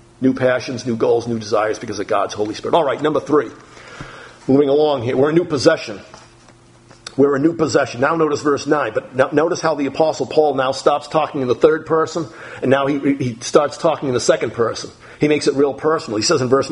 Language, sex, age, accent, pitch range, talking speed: English, male, 50-69, American, 140-230 Hz, 225 wpm